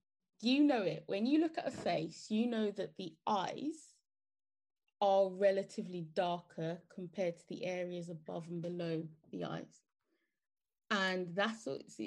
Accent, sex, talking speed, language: British, female, 140 wpm, English